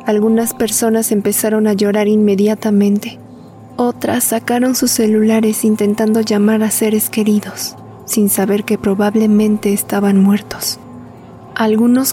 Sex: female